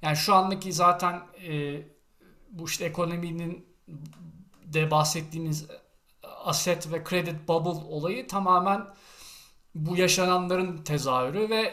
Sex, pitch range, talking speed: male, 160-195 Hz, 100 wpm